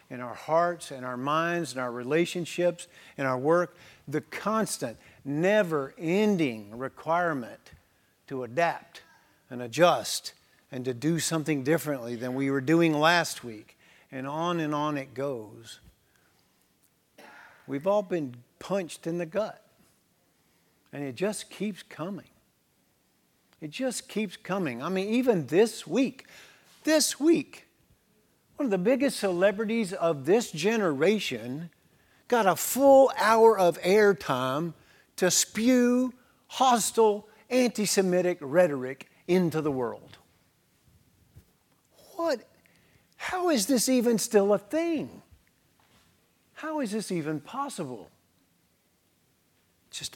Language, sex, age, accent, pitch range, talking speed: English, male, 50-69, American, 140-215 Hz, 115 wpm